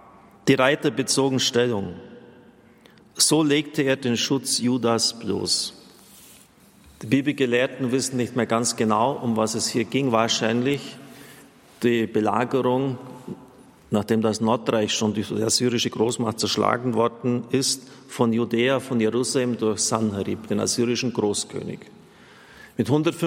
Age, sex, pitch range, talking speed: 50-69, male, 110-135 Hz, 120 wpm